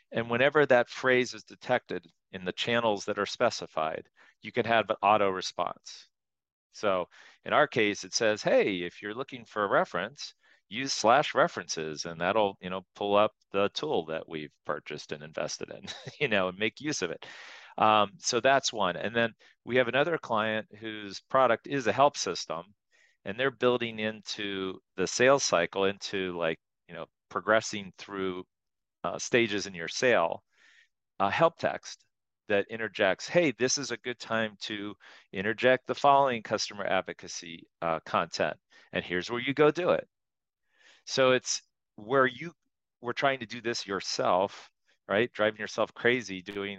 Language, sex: English, male